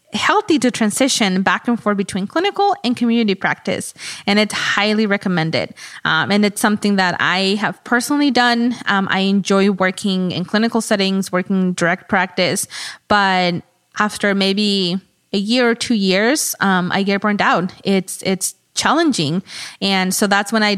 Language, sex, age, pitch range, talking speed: English, female, 20-39, 185-210 Hz, 160 wpm